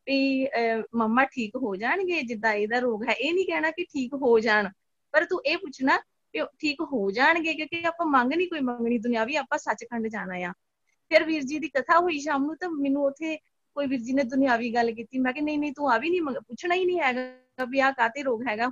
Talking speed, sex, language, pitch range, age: 220 wpm, female, Punjabi, 240-300 Hz, 20-39